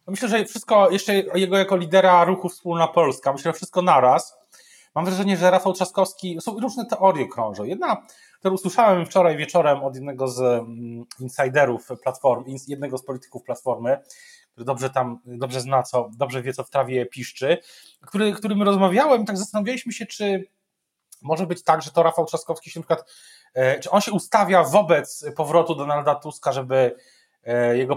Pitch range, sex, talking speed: 130-185 Hz, male, 165 wpm